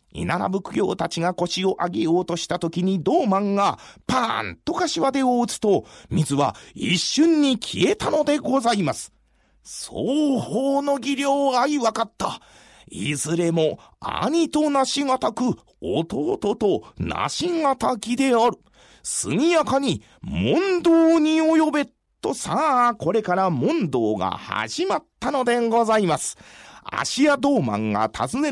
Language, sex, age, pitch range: Japanese, male, 40-59, 175-270 Hz